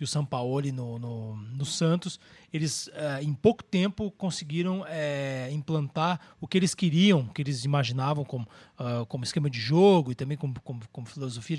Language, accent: Portuguese, Brazilian